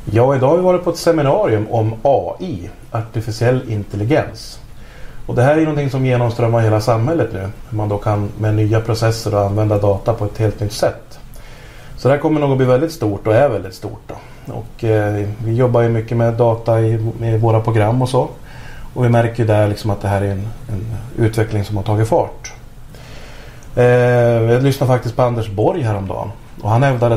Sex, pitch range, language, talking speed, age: male, 110-125 Hz, Swedish, 200 wpm, 30-49